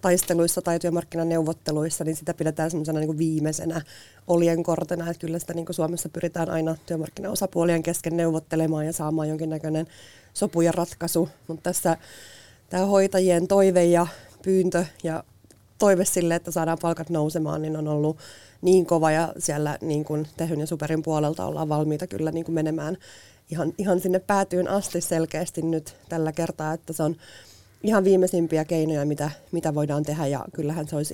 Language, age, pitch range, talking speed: Finnish, 30-49, 155-175 Hz, 155 wpm